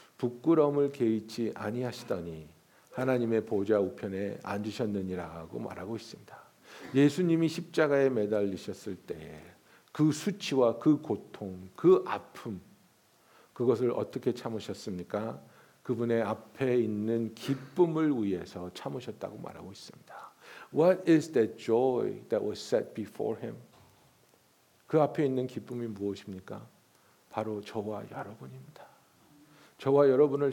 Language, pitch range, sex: Korean, 100-140 Hz, male